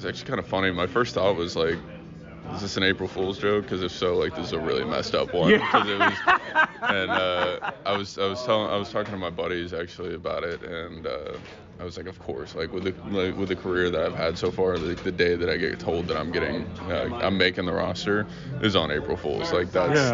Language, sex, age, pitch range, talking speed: English, male, 20-39, 90-105 Hz, 255 wpm